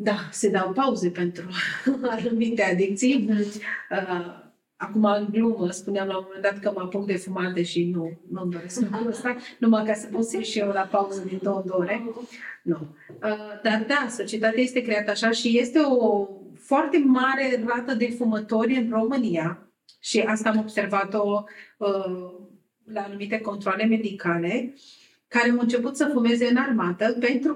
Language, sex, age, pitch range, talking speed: Romanian, female, 30-49, 195-240 Hz, 150 wpm